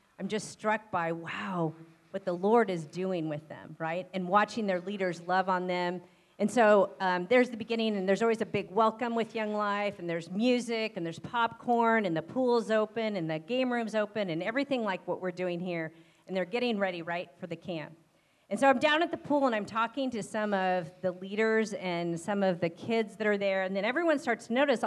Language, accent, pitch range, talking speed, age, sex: English, American, 175-225 Hz, 225 wpm, 40-59, female